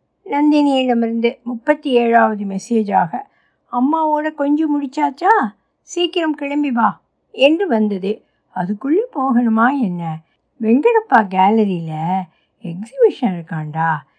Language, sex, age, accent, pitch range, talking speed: Tamil, female, 60-79, native, 220-290 Hz, 80 wpm